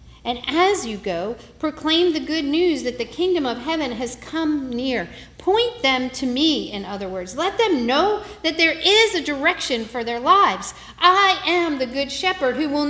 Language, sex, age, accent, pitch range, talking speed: English, female, 50-69, American, 240-340 Hz, 190 wpm